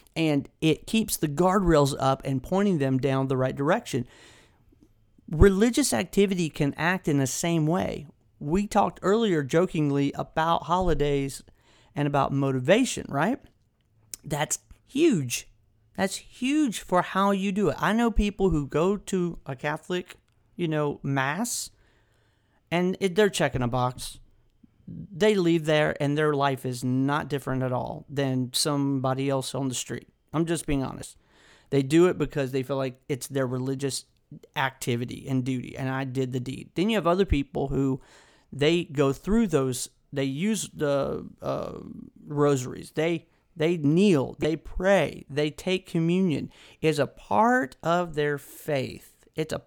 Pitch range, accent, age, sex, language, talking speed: 135-180 Hz, American, 40-59, male, English, 150 wpm